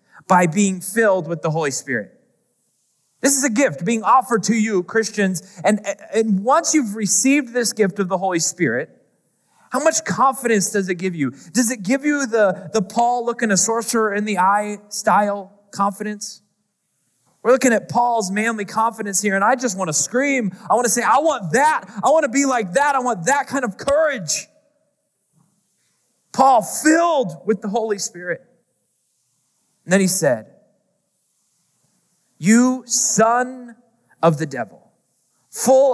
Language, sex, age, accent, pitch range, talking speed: English, male, 30-49, American, 185-245 Hz, 160 wpm